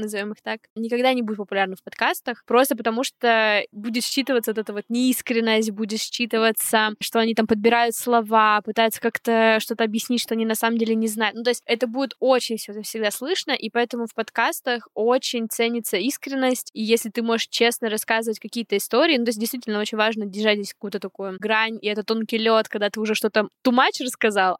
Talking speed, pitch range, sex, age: 200 wpm, 220-245 Hz, female, 10-29